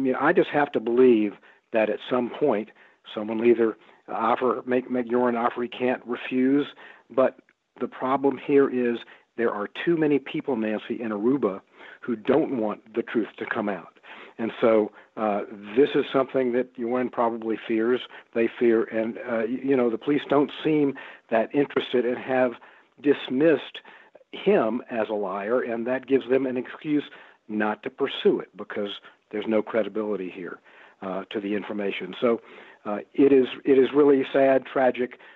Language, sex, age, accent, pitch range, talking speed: English, male, 50-69, American, 115-135 Hz, 175 wpm